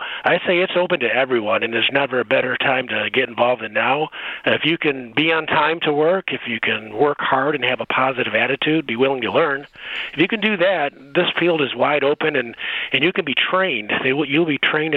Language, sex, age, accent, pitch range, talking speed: English, male, 40-59, American, 125-150 Hz, 235 wpm